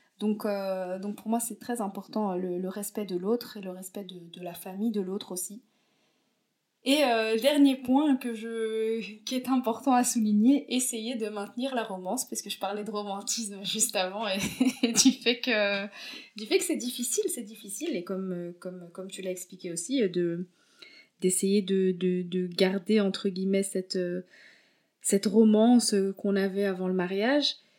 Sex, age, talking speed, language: female, 20-39, 180 wpm, French